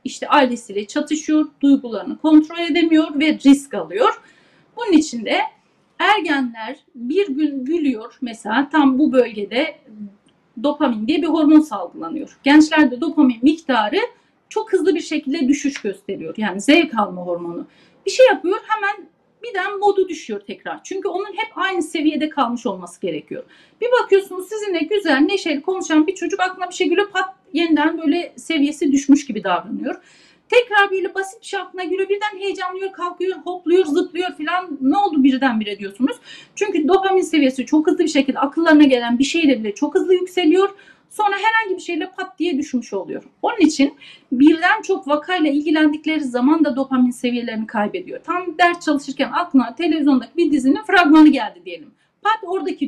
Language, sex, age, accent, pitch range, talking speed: Turkish, female, 40-59, native, 275-370 Hz, 150 wpm